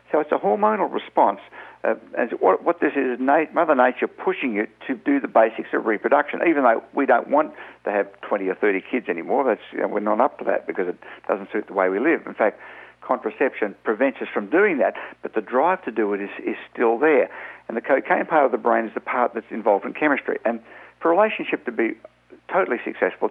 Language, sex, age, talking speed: English, male, 60-79, 225 wpm